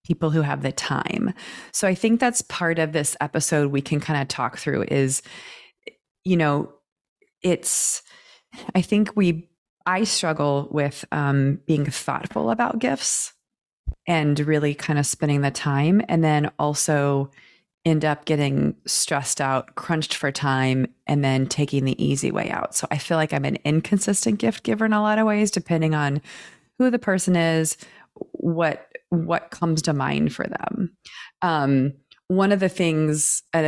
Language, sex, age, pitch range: English, female, 30-49, 145-185 Hz